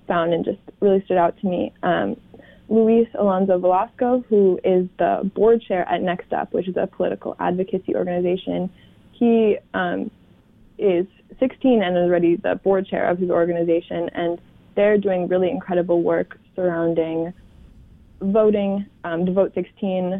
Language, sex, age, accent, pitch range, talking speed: English, female, 20-39, American, 175-195 Hz, 150 wpm